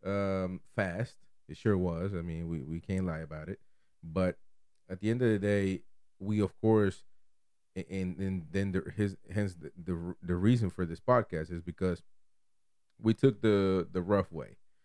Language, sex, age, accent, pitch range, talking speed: English, male, 30-49, American, 85-105 Hz, 180 wpm